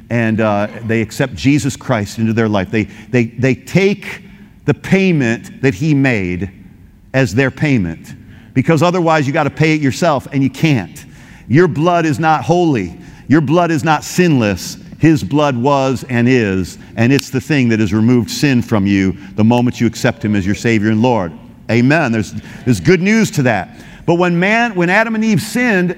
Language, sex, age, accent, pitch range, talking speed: English, male, 50-69, American, 130-195 Hz, 190 wpm